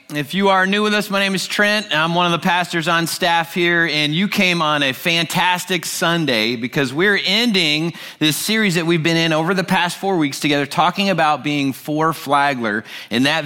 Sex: male